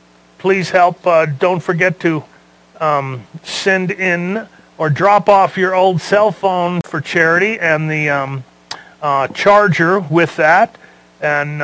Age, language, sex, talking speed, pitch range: 40-59, English, male, 135 wpm, 150-185 Hz